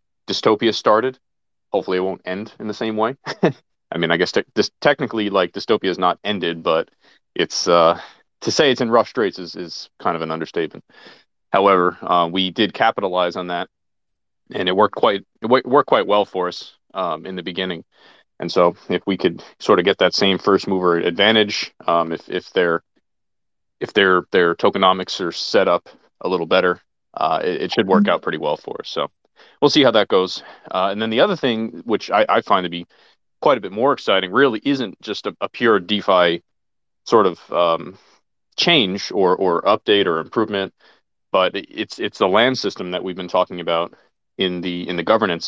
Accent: American